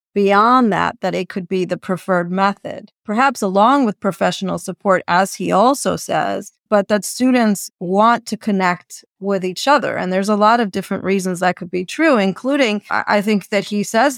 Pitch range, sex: 190-225 Hz, female